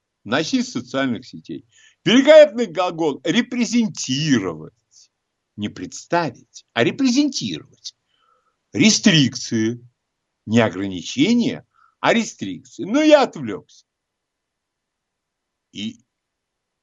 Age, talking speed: 60-79, 70 wpm